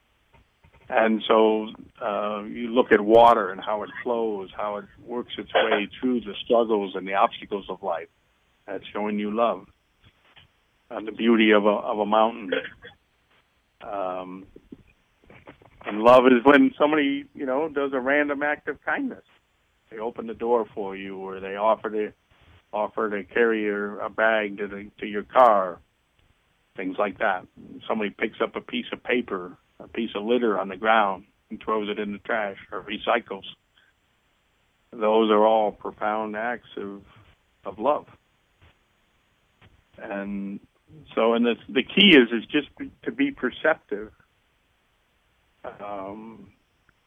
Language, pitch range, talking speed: English, 105-120 Hz, 150 wpm